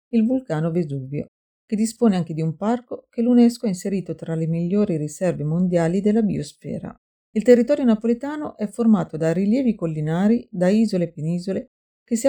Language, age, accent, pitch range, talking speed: Italian, 40-59, native, 170-235 Hz, 165 wpm